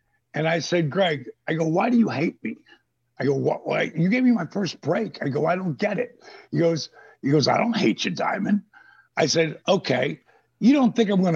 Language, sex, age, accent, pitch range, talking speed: English, male, 60-79, American, 155-210 Hz, 225 wpm